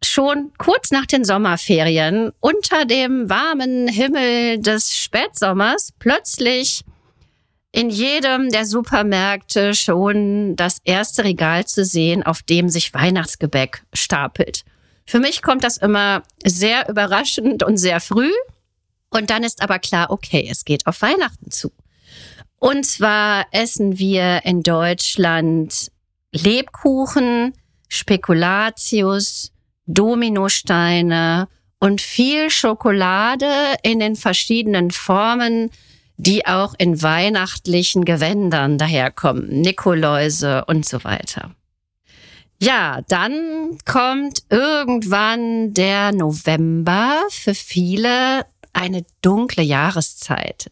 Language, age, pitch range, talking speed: German, 40-59, 175-235 Hz, 100 wpm